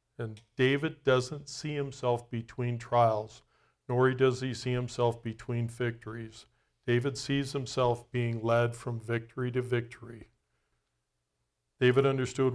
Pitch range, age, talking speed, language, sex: 110-135 Hz, 50-69, 120 wpm, English, male